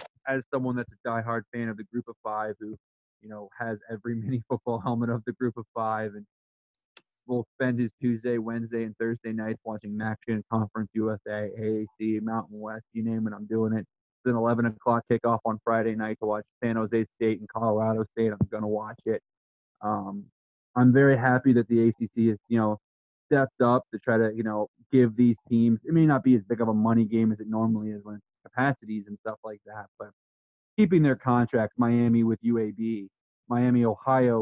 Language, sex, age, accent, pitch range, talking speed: English, male, 20-39, American, 110-125 Hz, 200 wpm